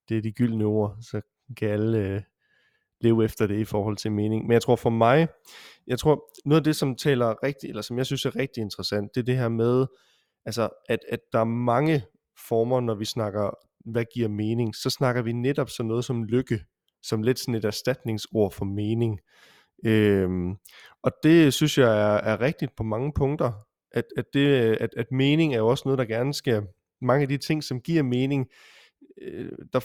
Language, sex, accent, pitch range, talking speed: Danish, male, native, 110-135 Hz, 205 wpm